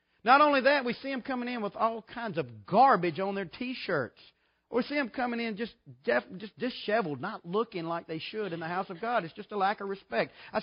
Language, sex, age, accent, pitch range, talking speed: English, male, 40-59, American, 150-250 Hz, 235 wpm